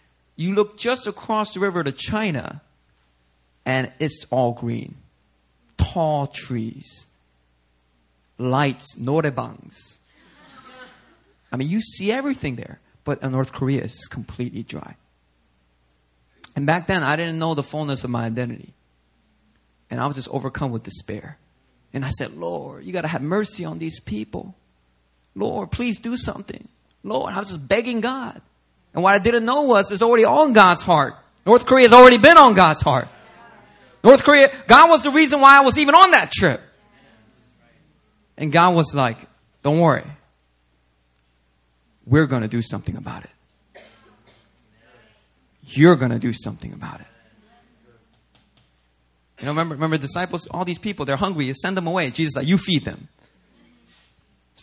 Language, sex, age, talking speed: English, male, 30-49, 155 wpm